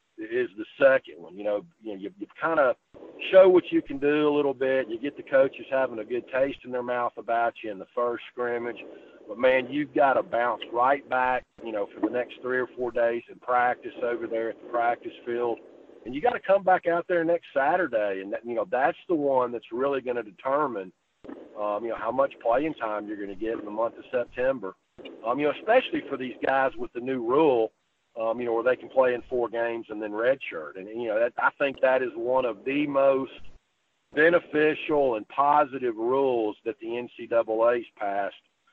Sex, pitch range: male, 115-145 Hz